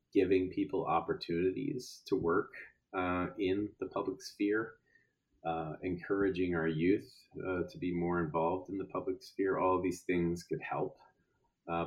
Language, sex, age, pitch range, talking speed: English, male, 30-49, 75-90 Hz, 150 wpm